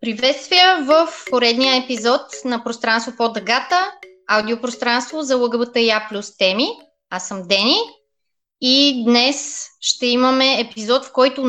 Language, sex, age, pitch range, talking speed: Bulgarian, female, 20-39, 235-295 Hz, 120 wpm